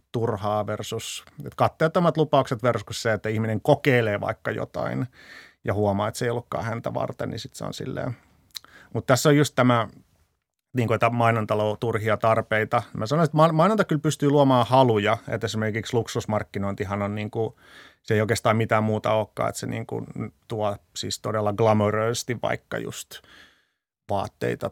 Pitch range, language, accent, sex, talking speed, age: 110-125 Hz, Finnish, native, male, 165 wpm, 30-49